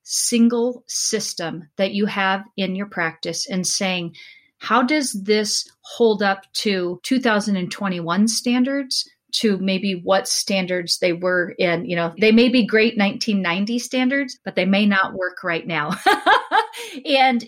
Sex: female